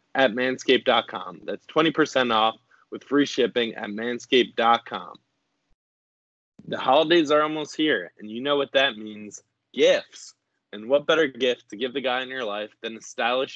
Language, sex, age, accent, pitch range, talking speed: English, male, 20-39, American, 110-135 Hz, 160 wpm